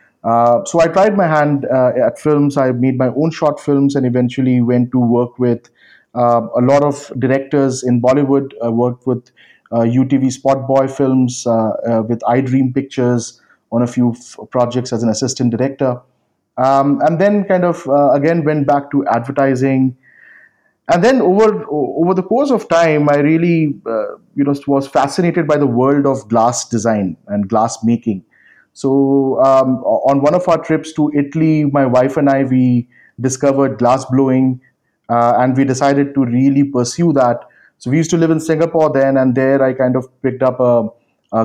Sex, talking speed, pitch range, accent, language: male, 185 wpm, 120-140 Hz, Indian, English